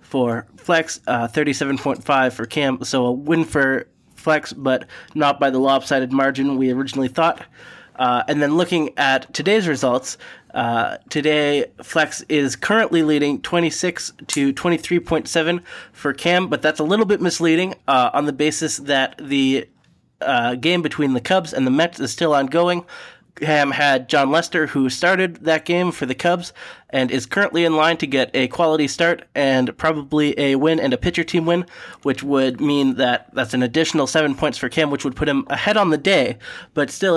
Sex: male